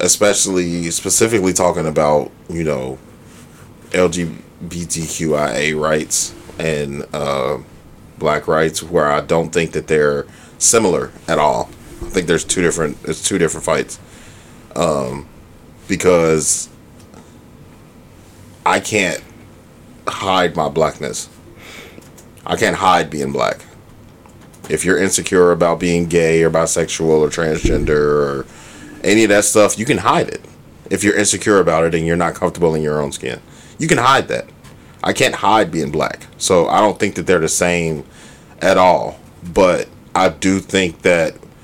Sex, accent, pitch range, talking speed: male, American, 80-100 Hz, 140 wpm